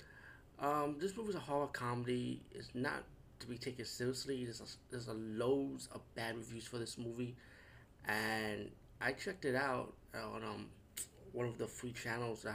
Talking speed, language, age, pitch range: 180 wpm, English, 30-49, 105-125 Hz